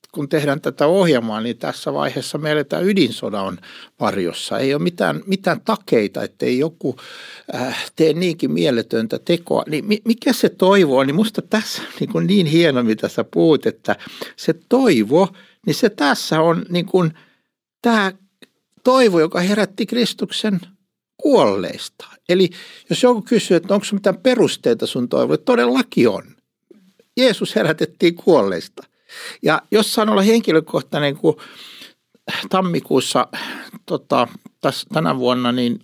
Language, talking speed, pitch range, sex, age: Finnish, 130 wpm, 160-220 Hz, male, 60-79